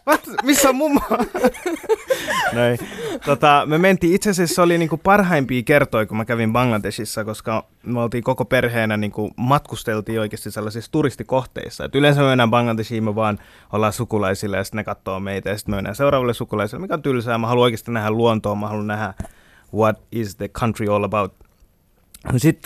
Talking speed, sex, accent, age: 170 wpm, male, native, 20-39